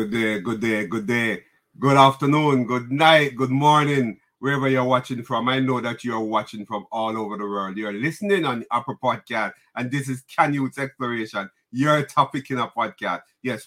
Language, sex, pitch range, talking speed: English, male, 110-135 Hz, 190 wpm